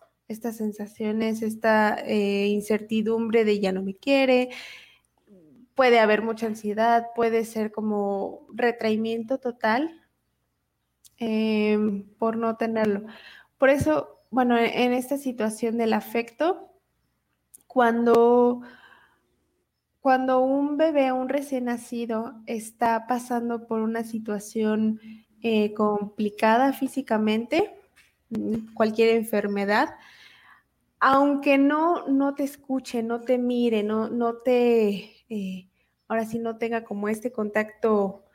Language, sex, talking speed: Spanish, female, 105 wpm